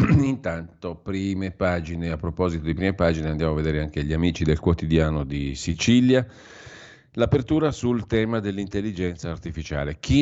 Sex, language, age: male, Italian, 40-59